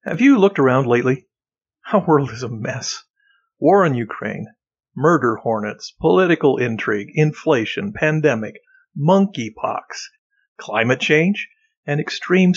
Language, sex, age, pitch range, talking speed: English, male, 50-69, 130-210 Hz, 115 wpm